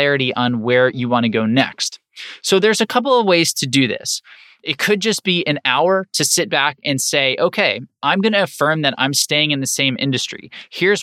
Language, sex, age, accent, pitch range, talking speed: English, male, 20-39, American, 135-175 Hz, 210 wpm